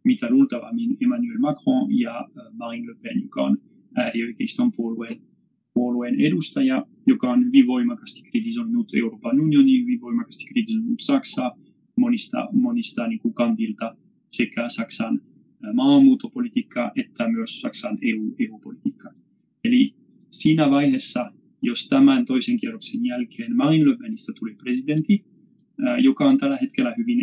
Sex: male